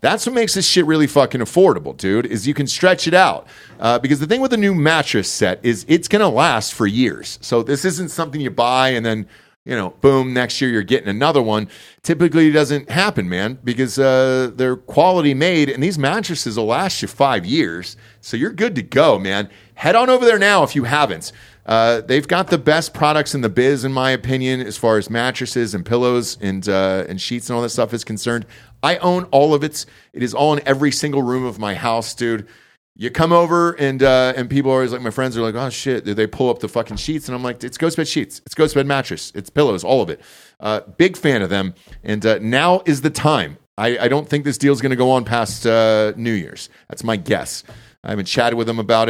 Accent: American